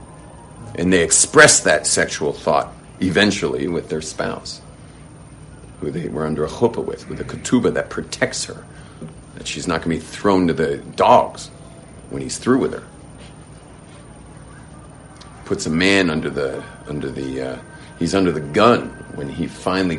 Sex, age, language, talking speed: male, 50-69, English, 160 wpm